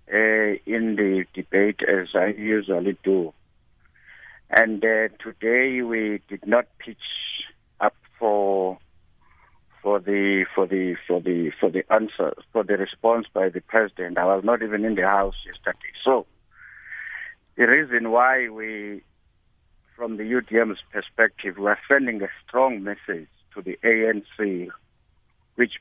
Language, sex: English, male